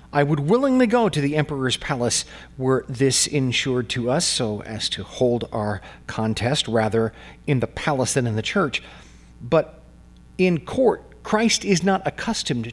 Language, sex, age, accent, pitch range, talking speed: English, male, 40-59, American, 110-170 Hz, 160 wpm